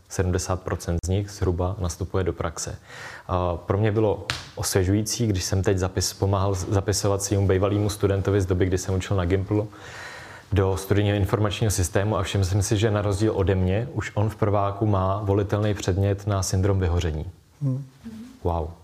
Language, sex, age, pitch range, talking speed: Czech, male, 20-39, 95-105 Hz, 160 wpm